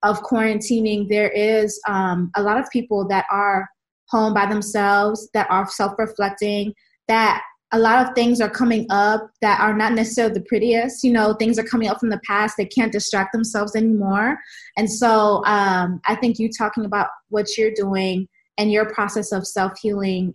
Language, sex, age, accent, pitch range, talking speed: English, female, 20-39, American, 195-235 Hz, 180 wpm